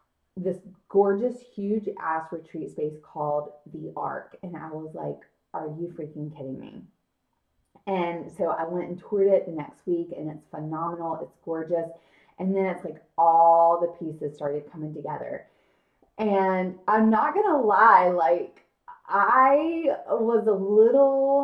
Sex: female